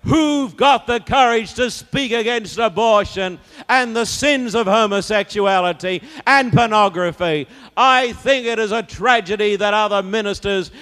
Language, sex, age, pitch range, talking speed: English, male, 50-69, 145-205 Hz, 135 wpm